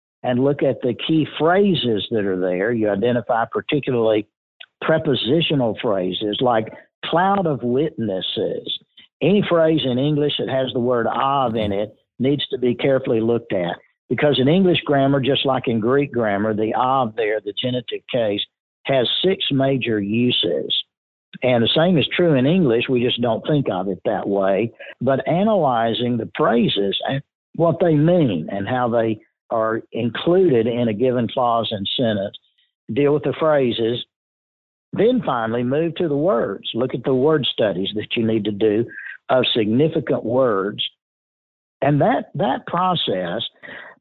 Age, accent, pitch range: 60-79, American, 110-150 Hz